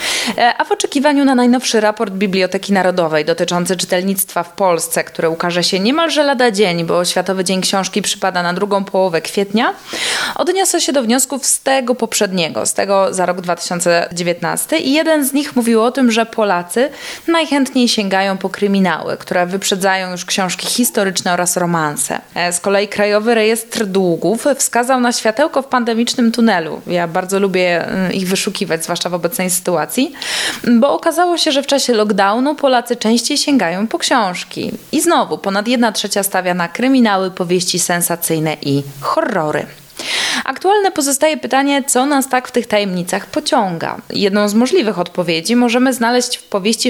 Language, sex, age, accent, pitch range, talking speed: Polish, female, 20-39, native, 185-250 Hz, 155 wpm